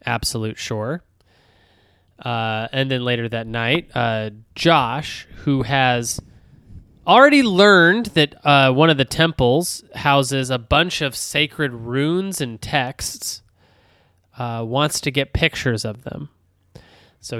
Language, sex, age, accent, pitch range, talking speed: English, male, 20-39, American, 115-145 Hz, 125 wpm